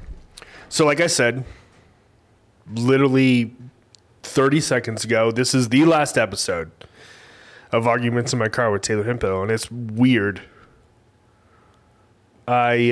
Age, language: 20-39, English